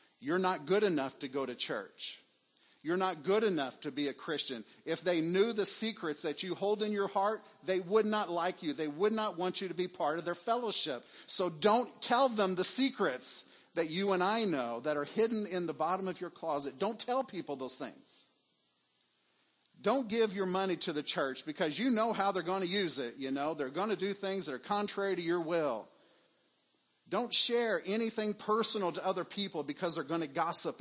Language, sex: English, male